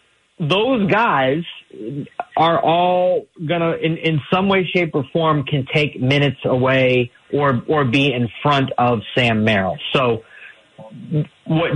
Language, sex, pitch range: English, male, 120-145 Hz